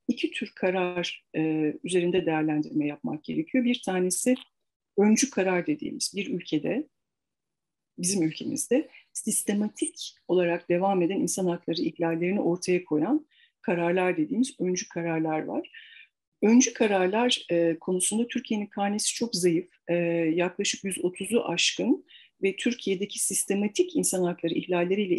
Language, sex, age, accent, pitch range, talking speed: Turkish, female, 50-69, native, 170-230 Hz, 115 wpm